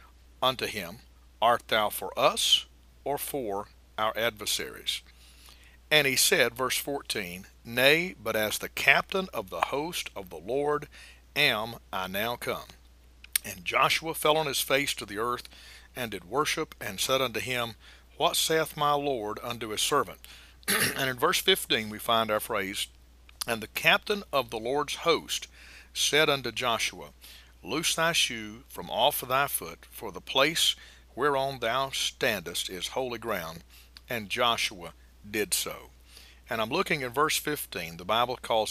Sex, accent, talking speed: male, American, 155 wpm